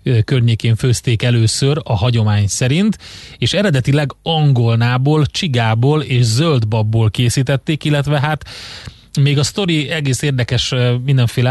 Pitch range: 115-140 Hz